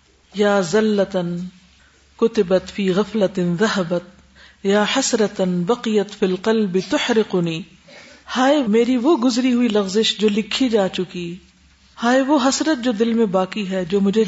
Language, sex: Urdu, female